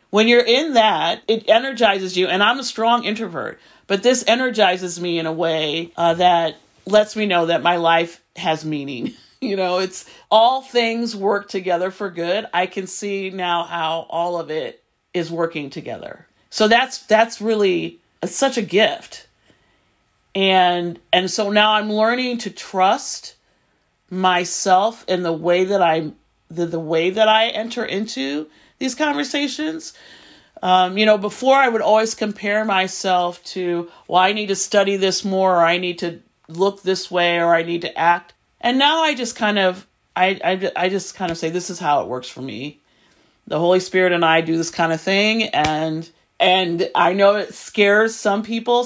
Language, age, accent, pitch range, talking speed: English, 40-59, American, 175-225 Hz, 180 wpm